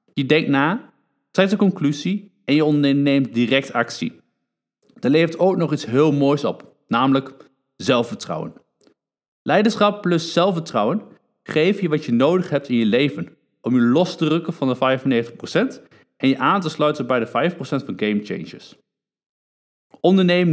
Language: Dutch